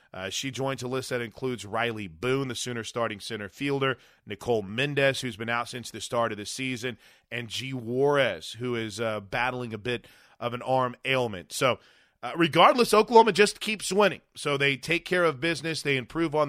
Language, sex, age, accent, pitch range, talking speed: English, male, 30-49, American, 120-155 Hz, 195 wpm